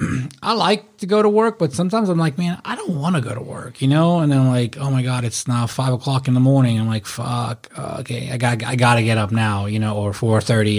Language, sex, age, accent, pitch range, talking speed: English, male, 30-49, American, 110-135 Hz, 285 wpm